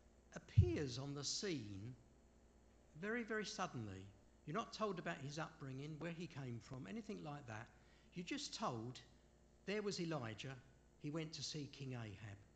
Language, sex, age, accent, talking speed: English, male, 50-69, British, 155 wpm